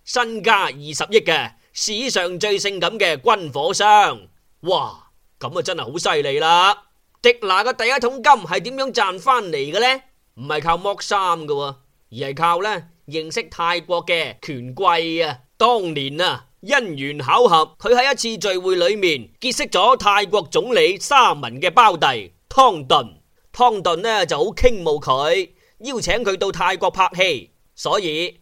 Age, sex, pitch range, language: 20-39, male, 170-275 Hz, Chinese